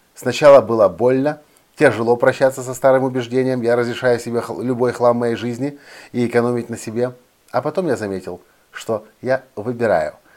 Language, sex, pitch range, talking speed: Russian, male, 105-135 Hz, 150 wpm